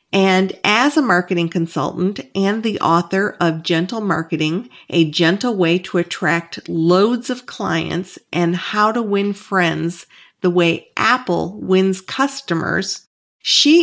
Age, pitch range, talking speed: 50-69, 180-230 Hz, 130 wpm